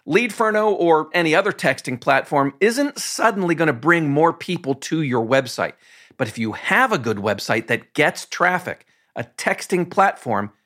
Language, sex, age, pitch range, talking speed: English, male, 50-69, 130-185 Hz, 165 wpm